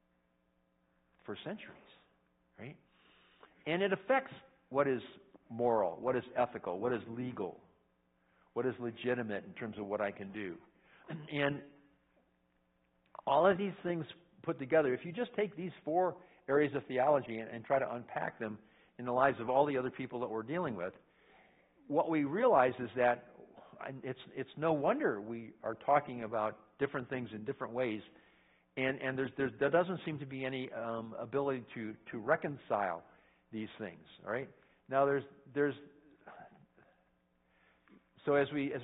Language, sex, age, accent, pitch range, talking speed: English, male, 60-79, American, 115-145 Hz, 160 wpm